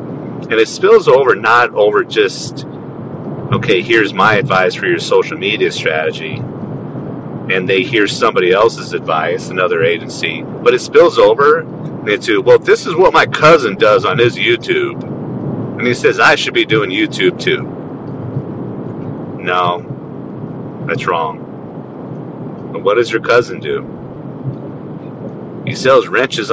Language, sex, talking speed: English, male, 135 wpm